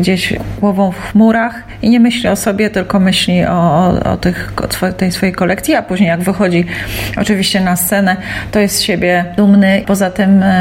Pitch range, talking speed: 170-195 Hz, 175 wpm